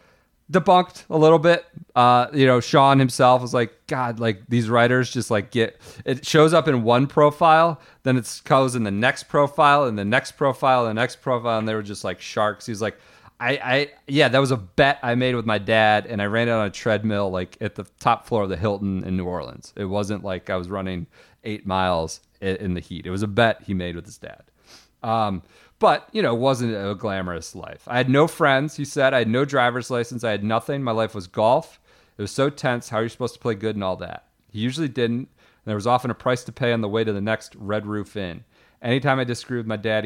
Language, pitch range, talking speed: English, 100-130 Hz, 245 wpm